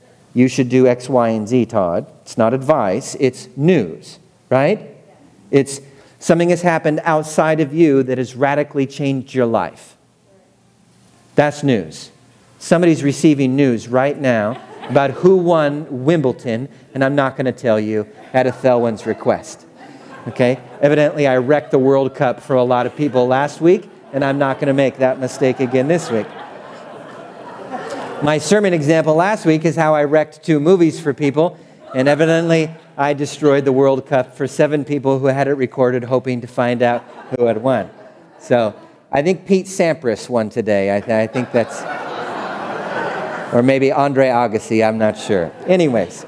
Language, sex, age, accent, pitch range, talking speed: English, male, 40-59, American, 125-155 Hz, 160 wpm